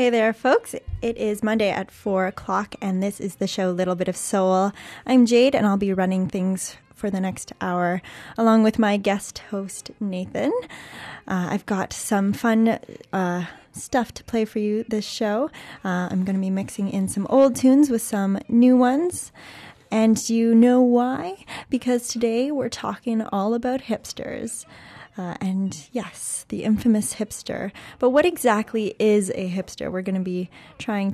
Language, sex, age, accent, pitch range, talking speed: English, female, 10-29, American, 190-235 Hz, 175 wpm